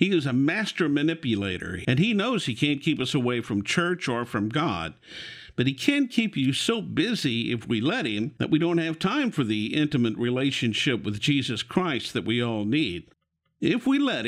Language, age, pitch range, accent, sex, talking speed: English, 50-69, 120-175 Hz, American, male, 200 wpm